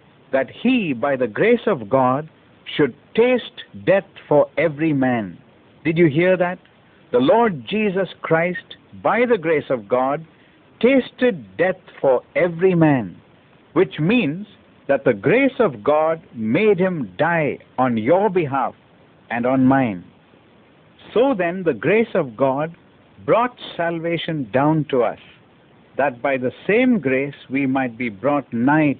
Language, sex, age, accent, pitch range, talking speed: Hindi, male, 60-79, native, 130-190 Hz, 140 wpm